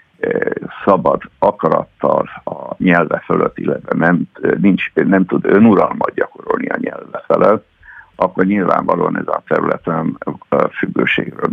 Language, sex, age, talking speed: Hungarian, male, 60-79, 110 wpm